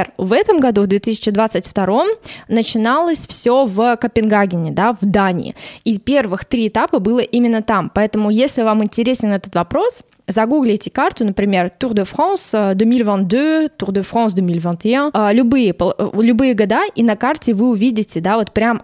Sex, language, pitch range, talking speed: female, Russian, 190-230 Hz, 150 wpm